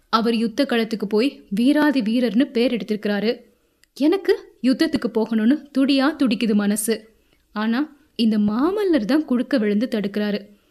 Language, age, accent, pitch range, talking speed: Tamil, 20-39, native, 215-270 Hz, 110 wpm